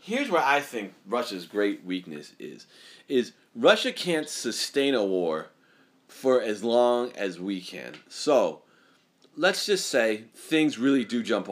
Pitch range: 100-140 Hz